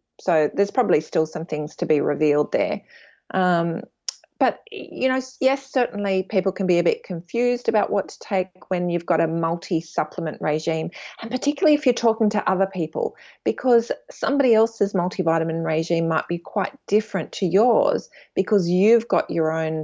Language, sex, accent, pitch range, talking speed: English, female, Australian, 160-215 Hz, 170 wpm